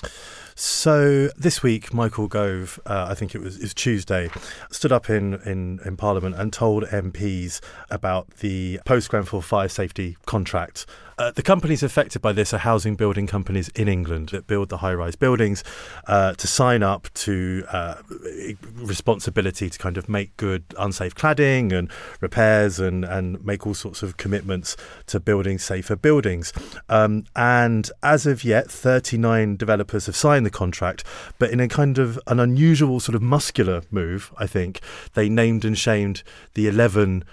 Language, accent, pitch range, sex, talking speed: English, British, 95-115 Hz, male, 165 wpm